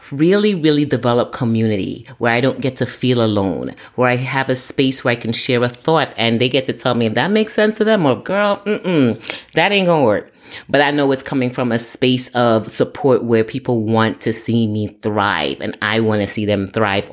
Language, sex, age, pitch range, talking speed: English, female, 30-49, 110-145 Hz, 225 wpm